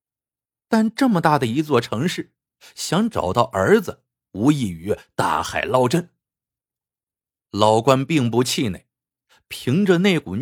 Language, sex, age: Chinese, male, 50-69